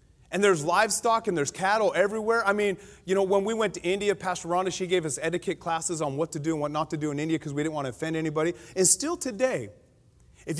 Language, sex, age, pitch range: English, male, 30-49, 170-255 Hz